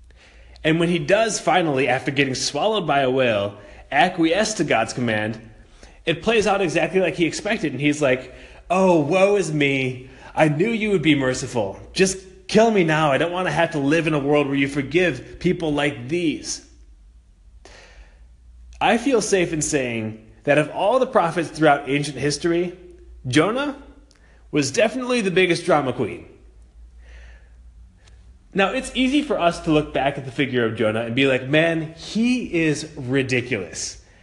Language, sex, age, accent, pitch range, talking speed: English, male, 30-49, American, 110-180 Hz, 165 wpm